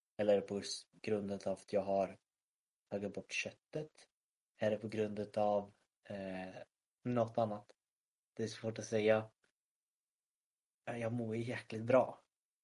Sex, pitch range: male, 100-115 Hz